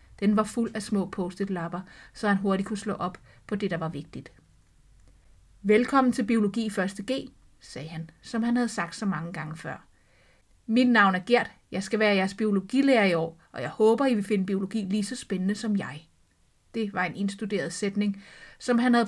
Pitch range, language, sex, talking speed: 190-230 Hz, Danish, female, 200 wpm